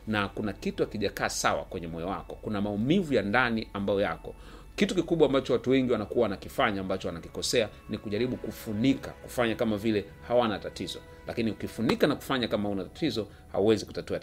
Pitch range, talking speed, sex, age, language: 95-120 Hz, 175 wpm, male, 40-59, Swahili